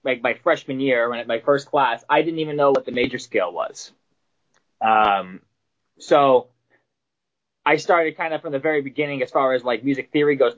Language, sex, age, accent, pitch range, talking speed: English, male, 20-39, American, 125-160 Hz, 200 wpm